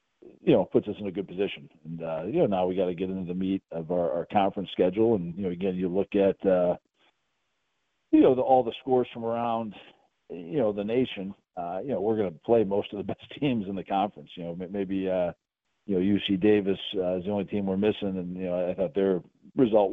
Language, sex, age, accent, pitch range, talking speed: English, male, 50-69, American, 90-100 Hz, 245 wpm